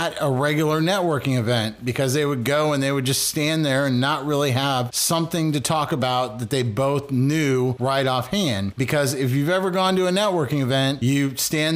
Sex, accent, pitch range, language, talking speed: male, American, 135-170 Hz, English, 205 wpm